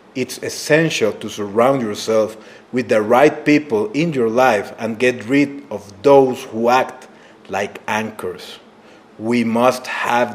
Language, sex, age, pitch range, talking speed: English, male, 40-59, 105-125 Hz, 140 wpm